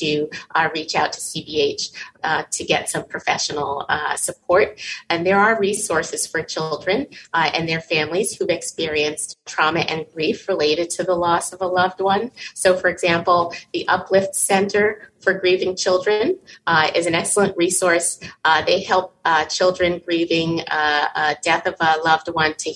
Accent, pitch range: American, 165-195 Hz